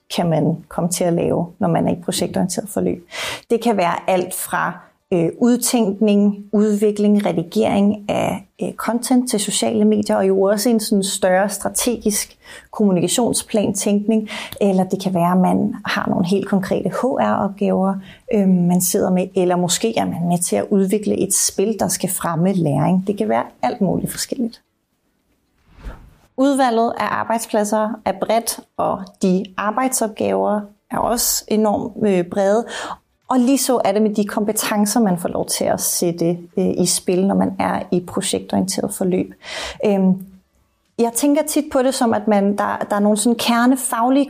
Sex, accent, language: female, native, Danish